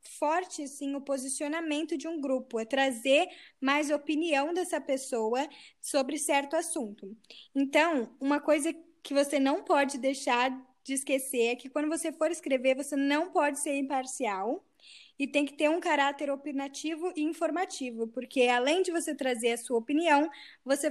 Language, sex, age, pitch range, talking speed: Portuguese, female, 10-29, 265-310 Hz, 160 wpm